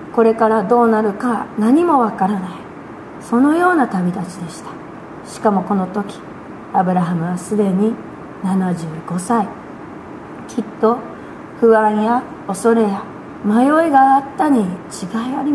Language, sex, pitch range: Japanese, female, 200-255 Hz